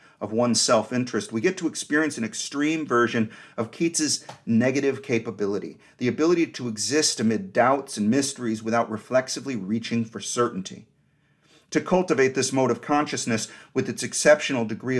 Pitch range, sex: 115-150 Hz, male